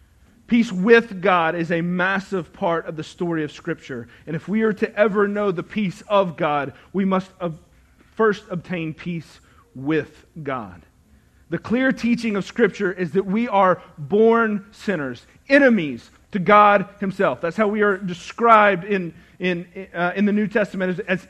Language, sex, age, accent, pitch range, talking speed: English, male, 40-59, American, 170-220 Hz, 160 wpm